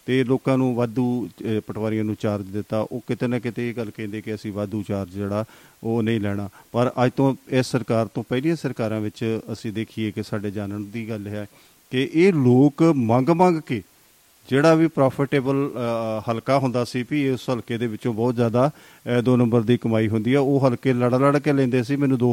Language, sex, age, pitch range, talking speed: Punjabi, male, 40-59, 110-130 Hz, 200 wpm